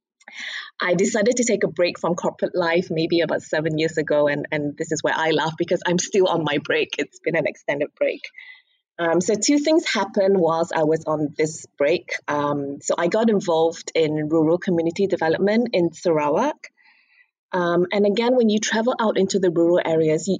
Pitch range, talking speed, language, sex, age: 160-205 Hz, 195 wpm, English, female, 20-39